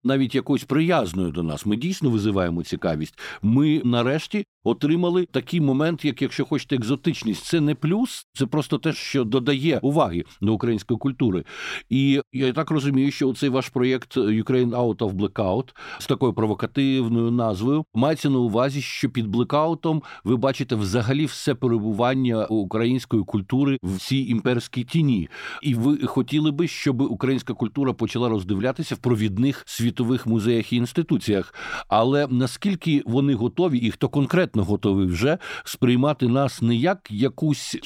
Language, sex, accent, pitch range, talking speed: Ukrainian, male, native, 115-145 Hz, 150 wpm